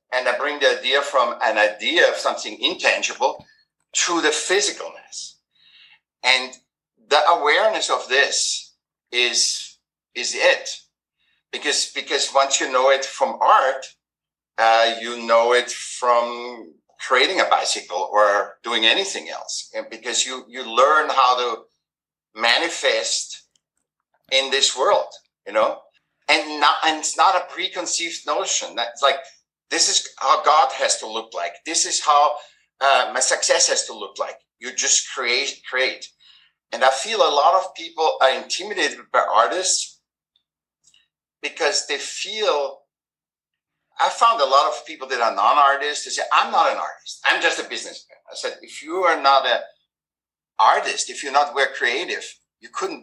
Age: 50-69